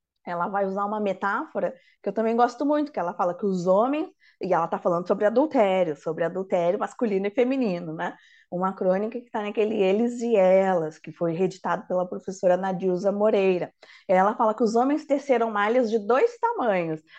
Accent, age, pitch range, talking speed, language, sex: Brazilian, 20-39, 195-265 Hz, 185 wpm, Portuguese, female